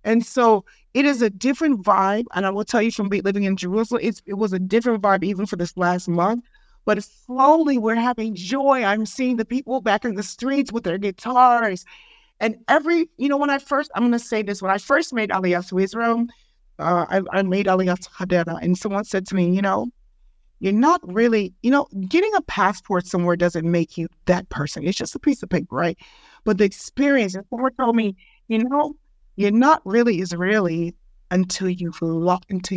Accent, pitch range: American, 190-240 Hz